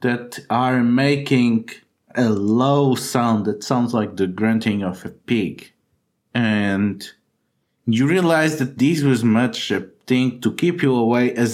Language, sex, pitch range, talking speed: English, male, 105-130 Hz, 145 wpm